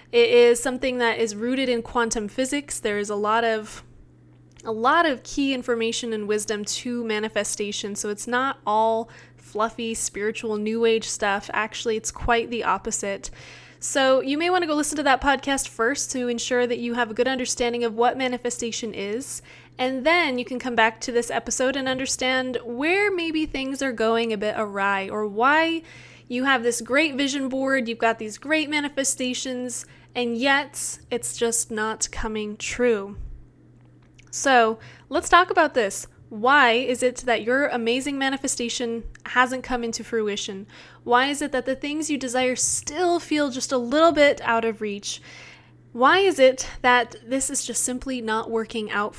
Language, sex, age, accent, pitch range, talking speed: English, female, 20-39, American, 220-270 Hz, 175 wpm